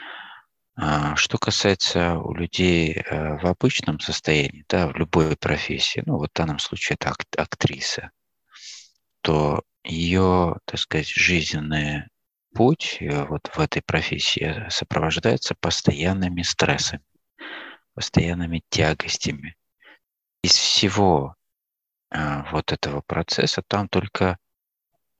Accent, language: native, Russian